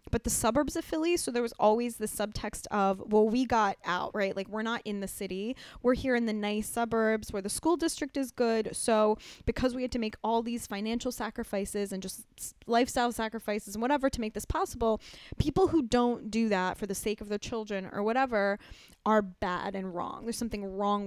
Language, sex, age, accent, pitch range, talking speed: English, female, 10-29, American, 210-255 Hz, 215 wpm